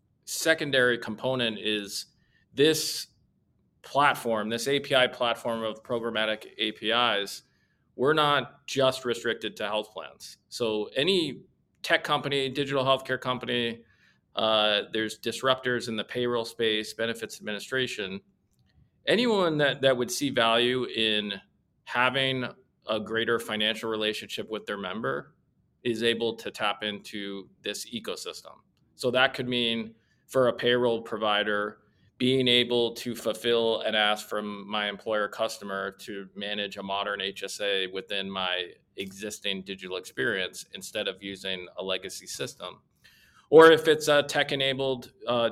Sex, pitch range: male, 105-125 Hz